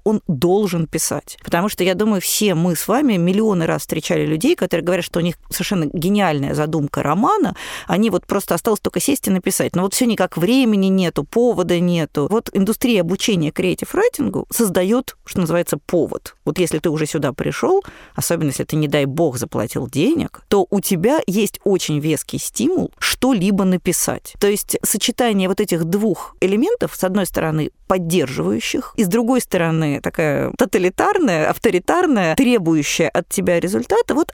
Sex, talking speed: female, 165 wpm